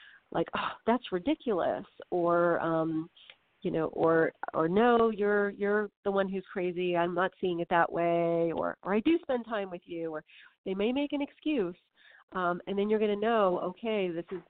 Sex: female